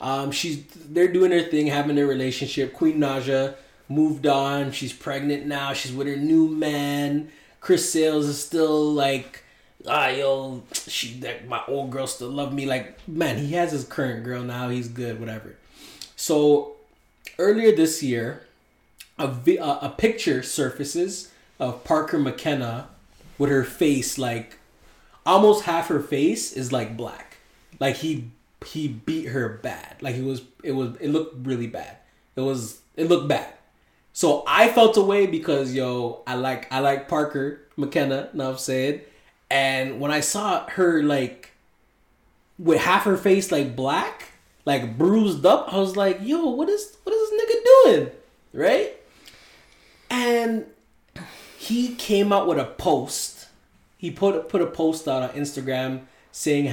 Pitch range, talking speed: 130-175 Hz, 155 wpm